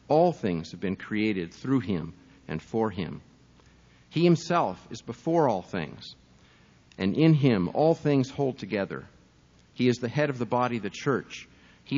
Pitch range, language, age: 105-140 Hz, English, 50-69